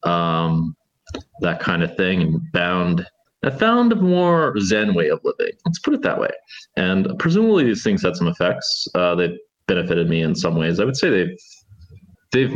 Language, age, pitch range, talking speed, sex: English, 20-39, 90-130 Hz, 185 wpm, male